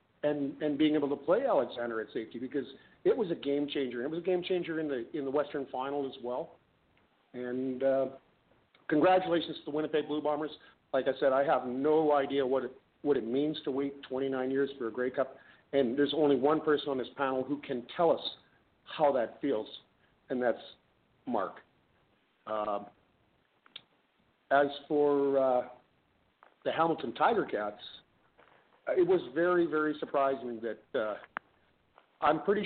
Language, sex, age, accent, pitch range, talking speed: English, male, 50-69, American, 125-150 Hz, 165 wpm